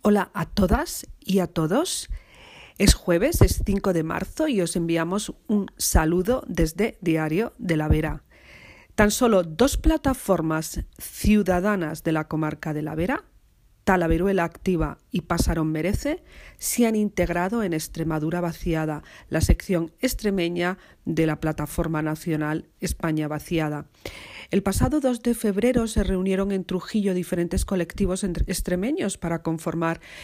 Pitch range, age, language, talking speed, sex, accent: 165-210 Hz, 40-59, Spanish, 135 wpm, female, Spanish